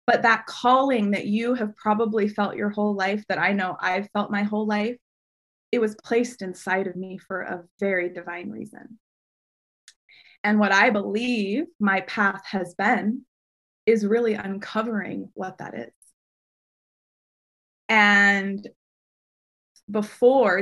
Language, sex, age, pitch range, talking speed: English, female, 20-39, 195-240 Hz, 135 wpm